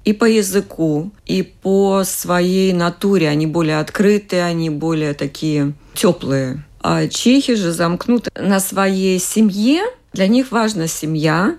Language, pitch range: Russian, 155-200 Hz